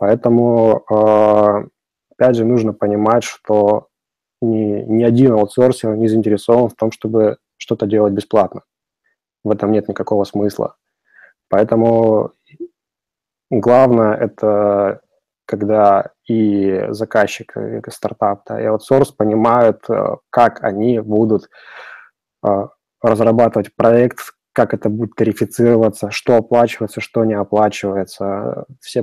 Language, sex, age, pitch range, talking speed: Russian, male, 20-39, 105-120 Hz, 100 wpm